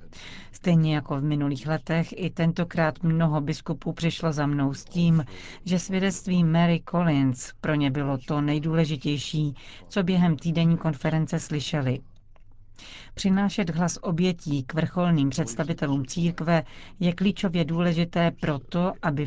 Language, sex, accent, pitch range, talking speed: Czech, female, native, 135-170 Hz, 125 wpm